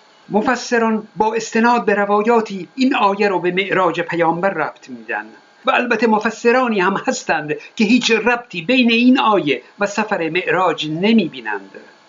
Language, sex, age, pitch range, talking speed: Persian, male, 50-69, 190-230 Hz, 145 wpm